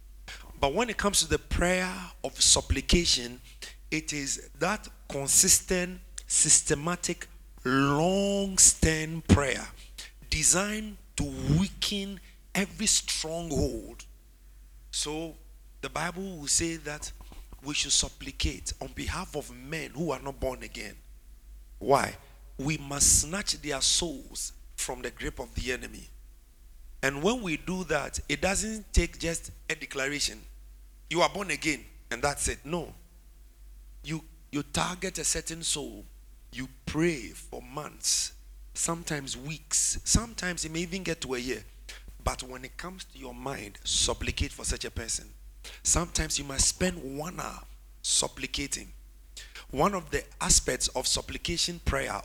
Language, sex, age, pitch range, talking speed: English, male, 50-69, 110-165 Hz, 135 wpm